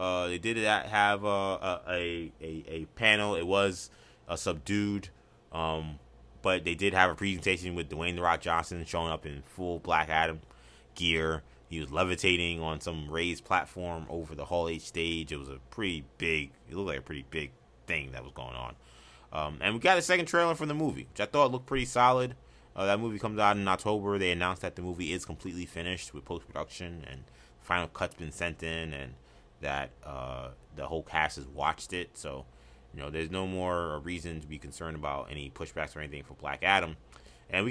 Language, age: English, 20-39